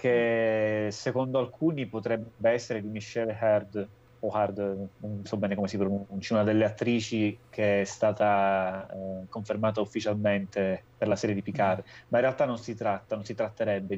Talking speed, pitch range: 170 wpm, 105-120 Hz